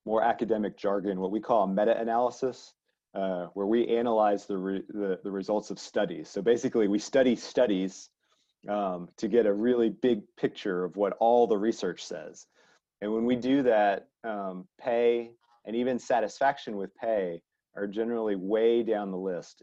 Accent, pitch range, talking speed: American, 100-120 Hz, 165 wpm